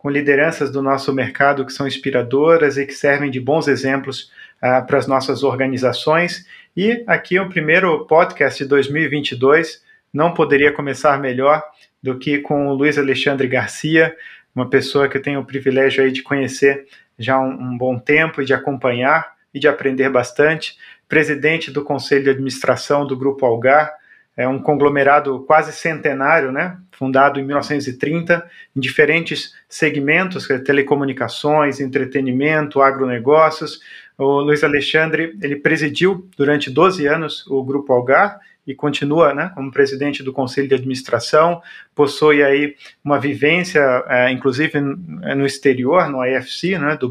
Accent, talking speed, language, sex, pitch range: Brazilian, 145 wpm, Portuguese, male, 135-155 Hz